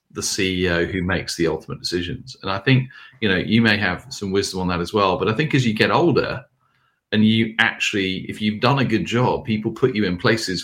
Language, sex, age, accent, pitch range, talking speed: English, male, 40-59, British, 95-115 Hz, 235 wpm